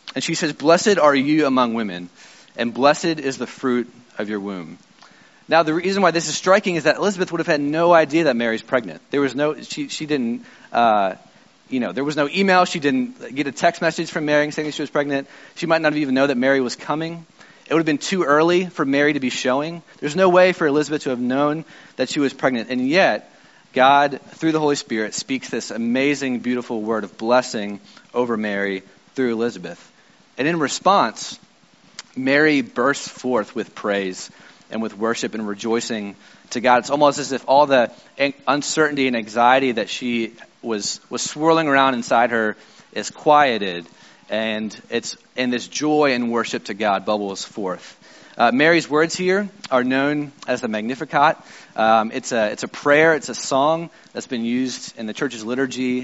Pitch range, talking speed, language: 120-160 Hz, 195 wpm, English